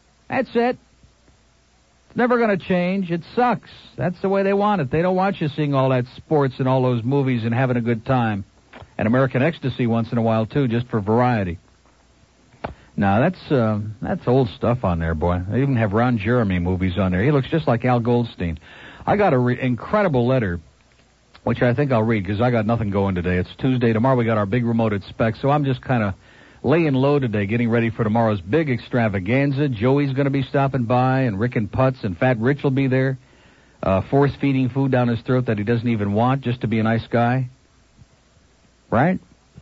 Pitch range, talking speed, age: 110-140 Hz, 215 wpm, 60-79